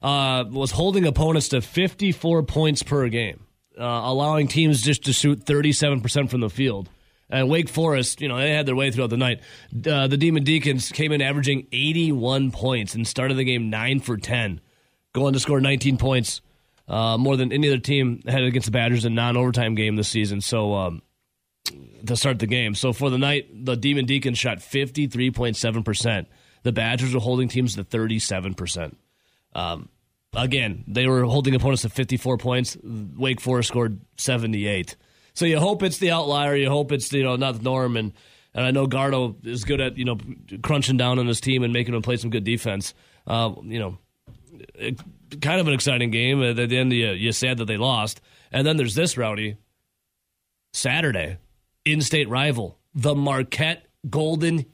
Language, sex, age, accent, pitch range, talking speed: English, male, 30-49, American, 115-140 Hz, 185 wpm